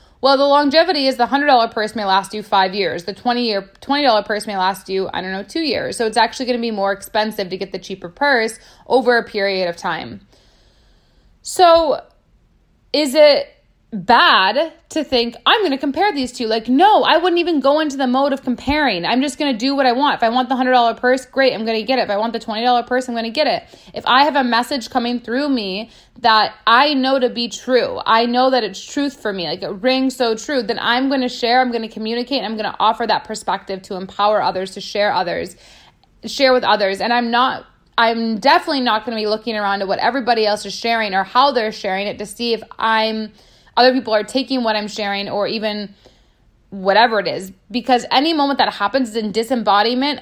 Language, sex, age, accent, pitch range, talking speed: English, female, 20-39, American, 210-260 Hz, 235 wpm